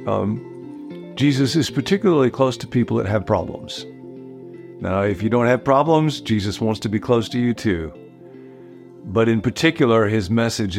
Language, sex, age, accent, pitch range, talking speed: English, male, 50-69, American, 100-135 Hz, 160 wpm